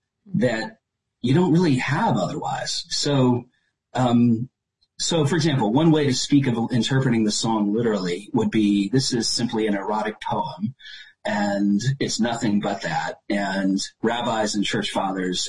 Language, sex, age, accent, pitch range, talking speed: English, male, 40-59, American, 110-170 Hz, 145 wpm